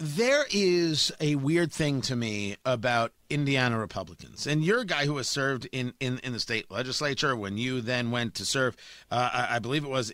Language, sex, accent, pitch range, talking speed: English, male, American, 145-200 Hz, 205 wpm